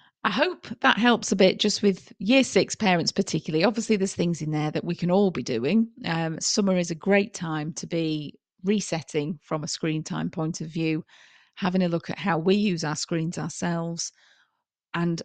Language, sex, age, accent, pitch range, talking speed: English, female, 40-59, British, 160-200 Hz, 195 wpm